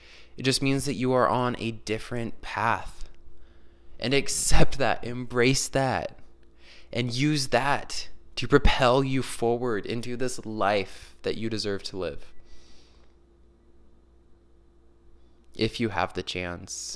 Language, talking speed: English, 125 wpm